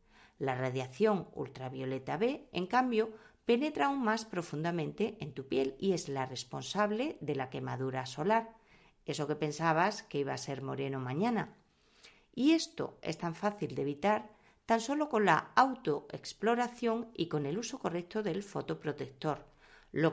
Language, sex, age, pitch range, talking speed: Spanish, female, 40-59, 135-210 Hz, 150 wpm